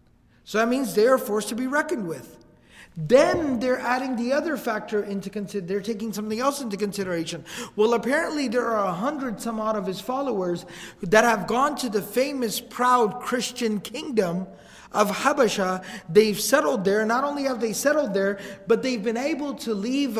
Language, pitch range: English, 195-255 Hz